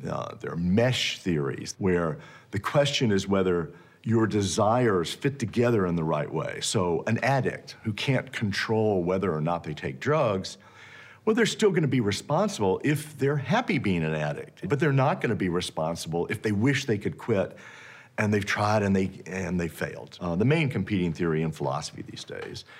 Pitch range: 90-140 Hz